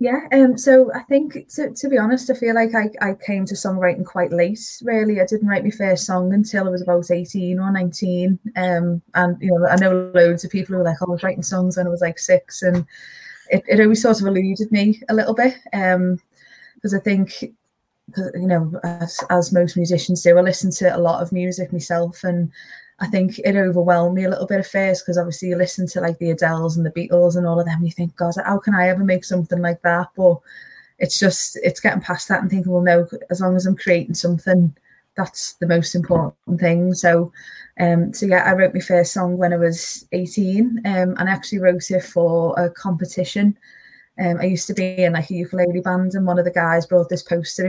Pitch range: 175-195 Hz